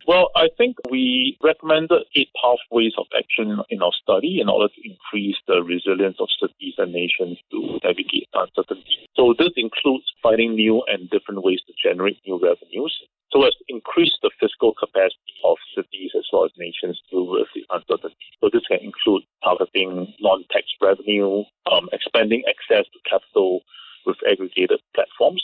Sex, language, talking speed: male, English, 160 wpm